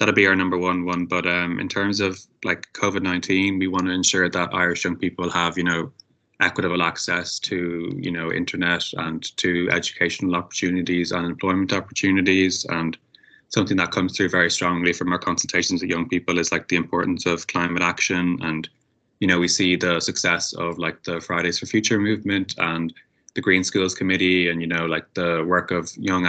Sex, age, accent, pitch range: male, 20-39, Irish, 85-95 Hz